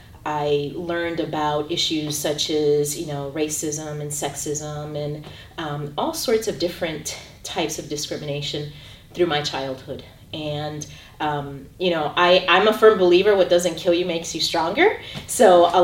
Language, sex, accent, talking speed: English, female, American, 150 wpm